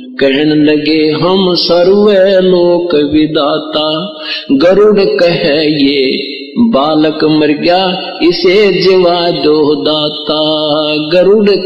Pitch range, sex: 155-200 Hz, male